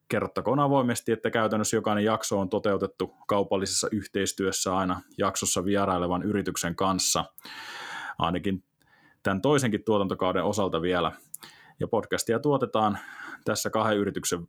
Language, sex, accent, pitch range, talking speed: Finnish, male, native, 90-110 Hz, 110 wpm